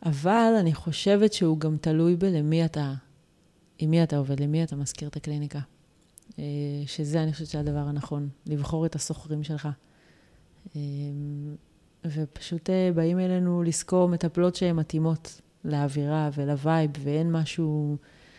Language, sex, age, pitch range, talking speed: Hebrew, female, 30-49, 150-175 Hz, 120 wpm